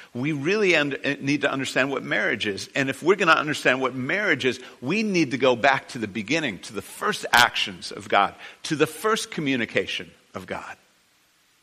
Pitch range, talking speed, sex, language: 125-175 Hz, 190 wpm, male, English